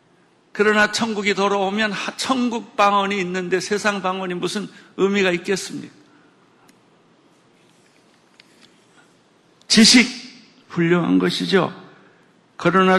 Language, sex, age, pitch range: Korean, male, 60-79, 155-230 Hz